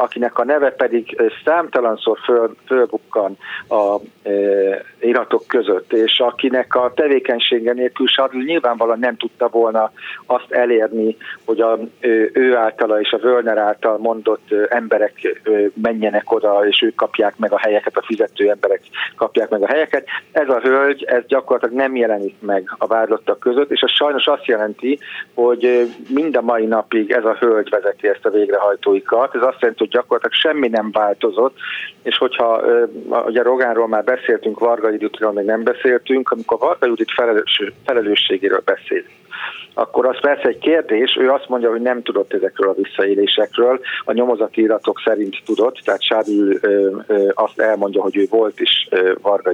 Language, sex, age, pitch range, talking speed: Hungarian, male, 50-69, 110-150 Hz, 155 wpm